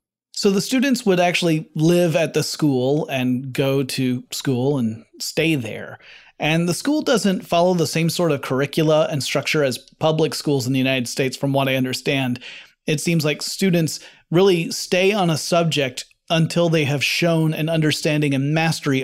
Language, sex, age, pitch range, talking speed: English, male, 30-49, 140-175 Hz, 175 wpm